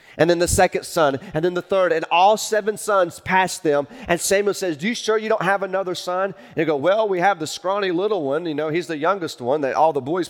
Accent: American